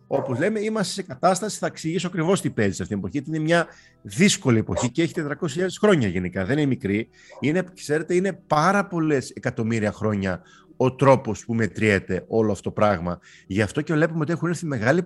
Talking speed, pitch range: 190 wpm, 120-195 Hz